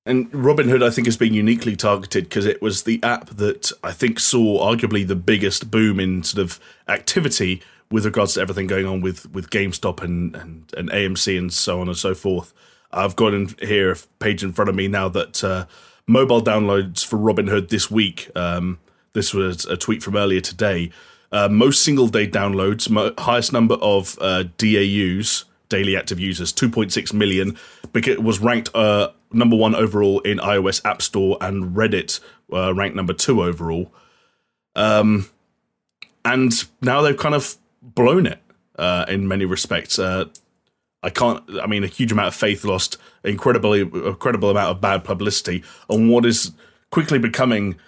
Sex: male